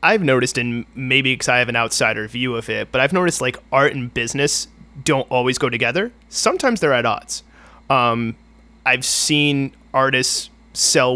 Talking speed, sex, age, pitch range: 170 wpm, male, 30-49, 125-150 Hz